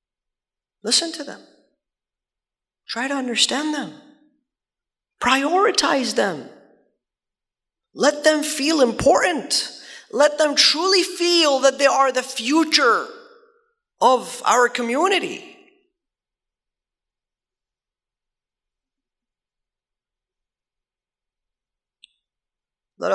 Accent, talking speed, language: American, 65 wpm, English